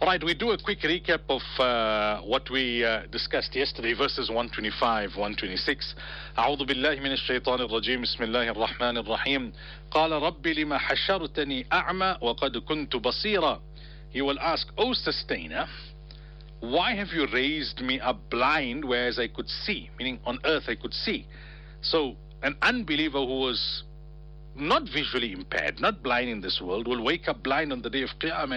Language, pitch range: English, 125-160 Hz